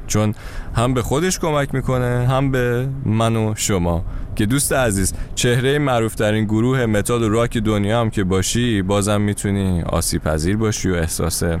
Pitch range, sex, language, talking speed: 90-115 Hz, male, Persian, 170 wpm